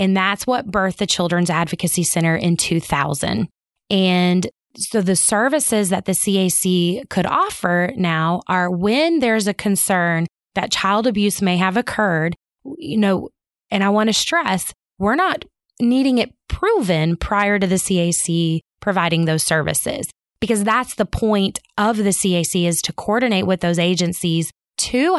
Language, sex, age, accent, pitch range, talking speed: English, female, 20-39, American, 175-215 Hz, 150 wpm